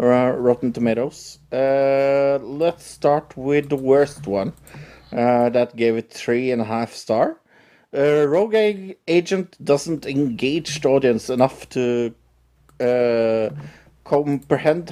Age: 50-69